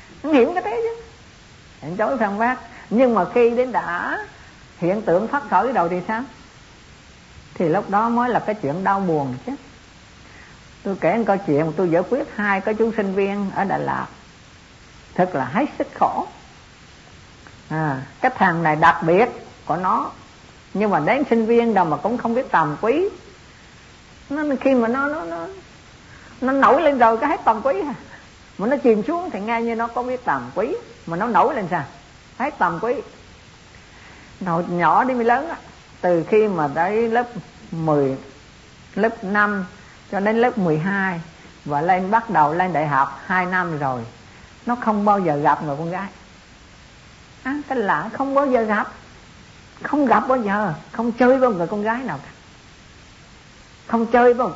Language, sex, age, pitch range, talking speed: Vietnamese, female, 50-69, 175-245 Hz, 185 wpm